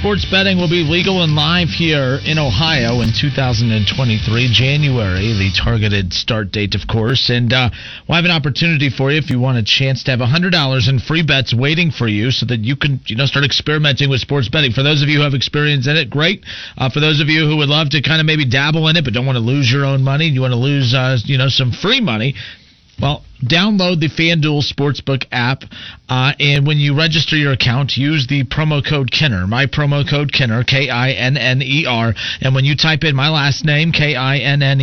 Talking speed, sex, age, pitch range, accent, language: 240 wpm, male, 40-59, 125-150 Hz, American, English